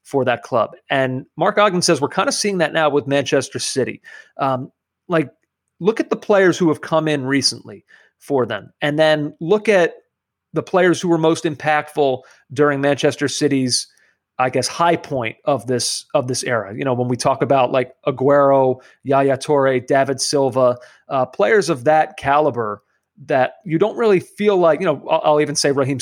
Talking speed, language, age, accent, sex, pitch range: 185 wpm, English, 30-49, American, male, 130-165 Hz